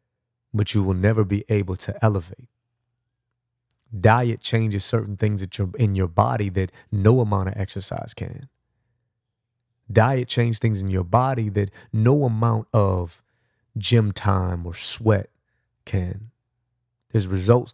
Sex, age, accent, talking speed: male, 30-49, American, 130 wpm